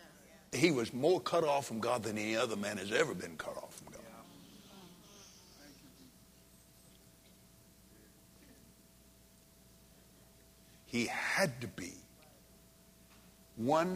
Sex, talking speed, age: male, 95 wpm, 60-79